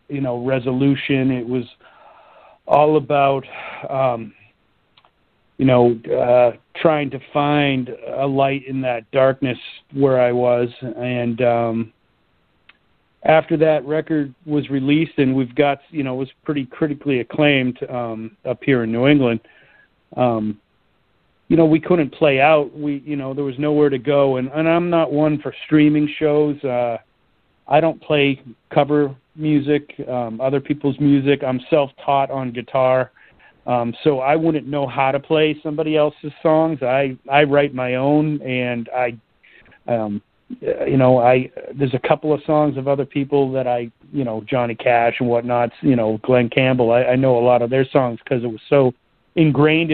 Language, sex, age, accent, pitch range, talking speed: English, male, 40-59, American, 125-150 Hz, 165 wpm